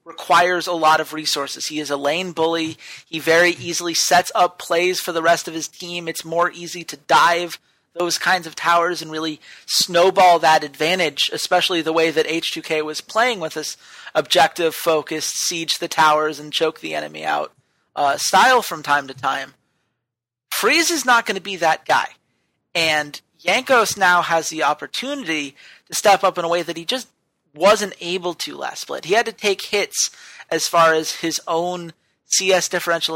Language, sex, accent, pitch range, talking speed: English, male, American, 155-180 Hz, 180 wpm